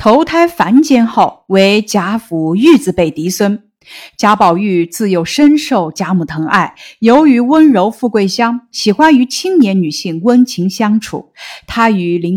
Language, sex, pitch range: Chinese, female, 180-255 Hz